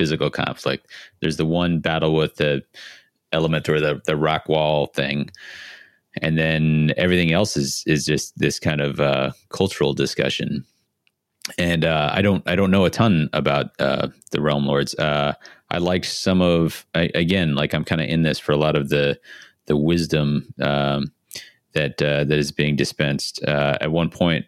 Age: 30-49